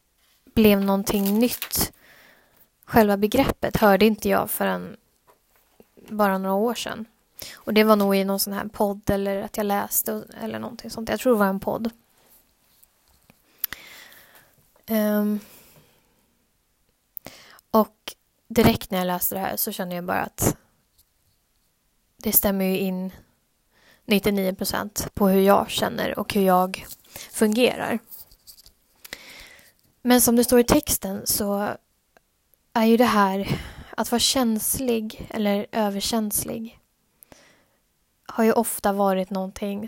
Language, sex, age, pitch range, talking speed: Swedish, female, 20-39, 200-230 Hz, 120 wpm